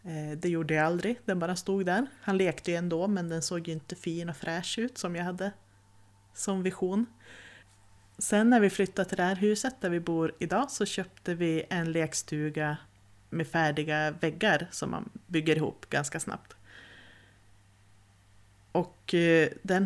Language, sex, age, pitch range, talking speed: Swedish, female, 30-49, 150-185 Hz, 165 wpm